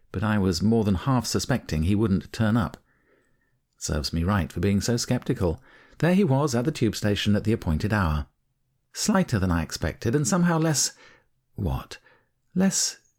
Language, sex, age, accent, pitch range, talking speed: English, male, 50-69, British, 95-130 Hz, 170 wpm